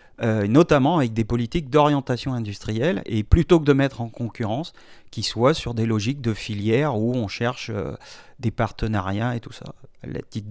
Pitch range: 115-145 Hz